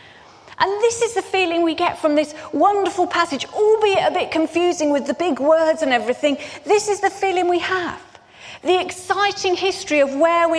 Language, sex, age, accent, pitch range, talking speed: English, female, 30-49, British, 280-370 Hz, 185 wpm